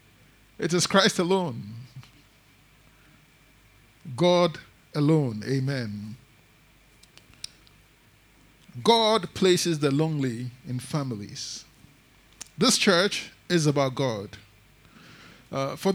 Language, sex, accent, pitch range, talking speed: English, male, Nigerian, 135-175 Hz, 75 wpm